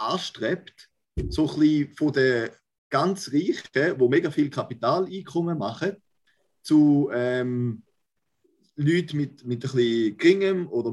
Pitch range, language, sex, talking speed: 130-185 Hz, German, male, 120 wpm